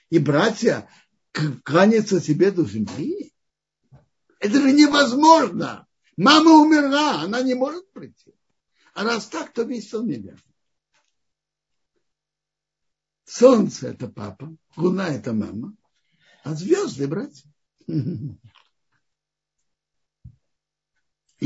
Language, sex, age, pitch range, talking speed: Russian, male, 60-79, 145-215 Hz, 90 wpm